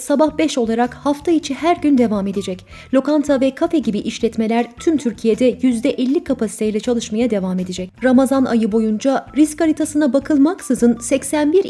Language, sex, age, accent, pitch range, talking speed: Turkish, female, 30-49, native, 230-285 Hz, 145 wpm